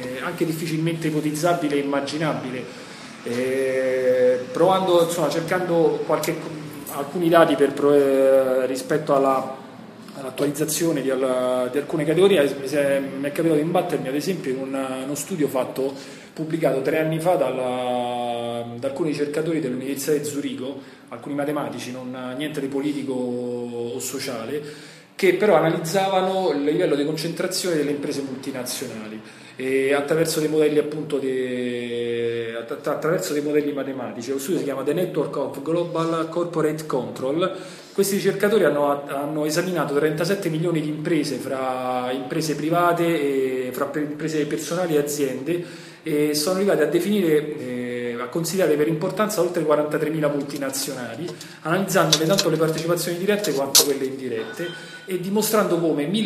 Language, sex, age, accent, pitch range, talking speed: Italian, male, 30-49, native, 135-165 Hz, 130 wpm